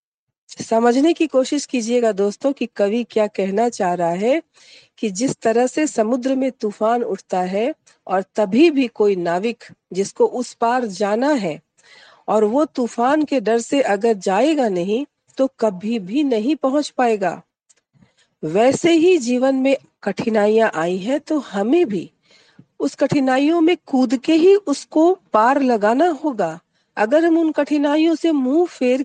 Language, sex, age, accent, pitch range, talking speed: Hindi, female, 50-69, native, 220-300 Hz, 150 wpm